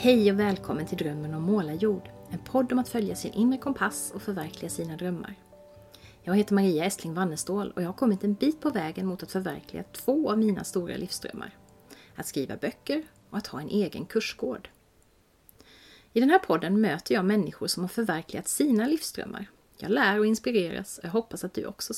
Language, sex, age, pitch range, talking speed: Swedish, female, 30-49, 180-225 Hz, 195 wpm